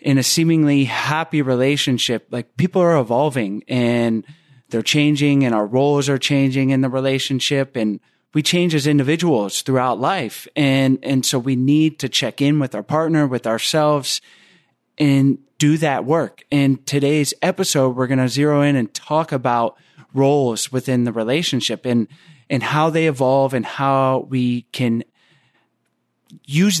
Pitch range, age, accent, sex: 125-150 Hz, 30-49, American, male